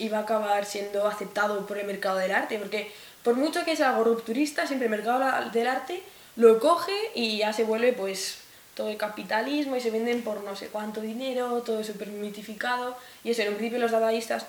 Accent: Spanish